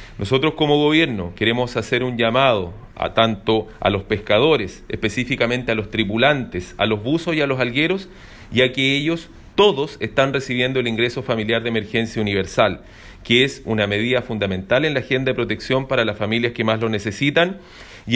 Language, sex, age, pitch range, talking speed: Spanish, male, 40-59, 110-145 Hz, 175 wpm